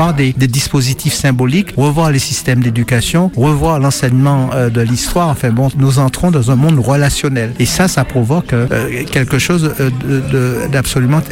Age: 60-79